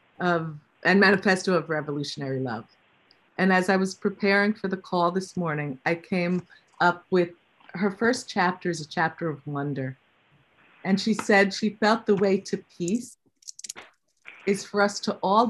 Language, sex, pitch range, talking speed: English, female, 165-200 Hz, 165 wpm